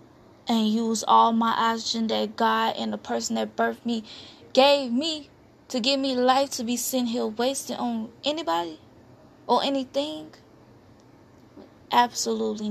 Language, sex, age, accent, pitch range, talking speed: English, female, 20-39, American, 220-275 Hz, 135 wpm